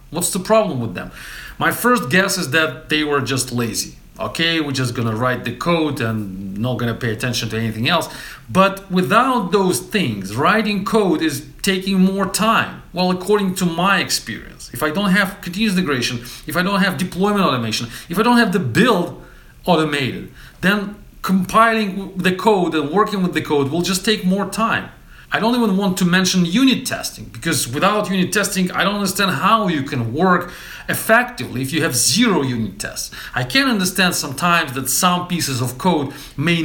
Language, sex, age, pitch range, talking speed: English, male, 40-59, 135-195 Hz, 190 wpm